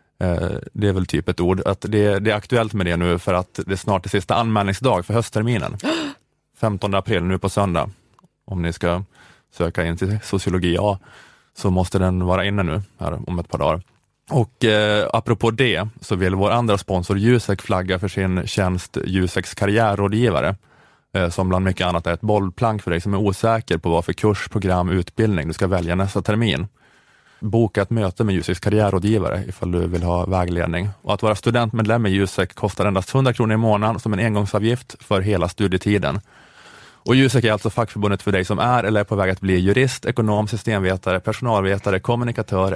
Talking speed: 180 wpm